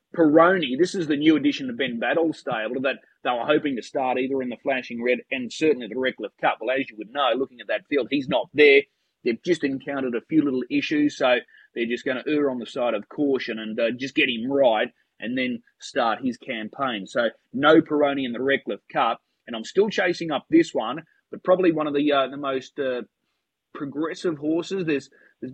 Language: English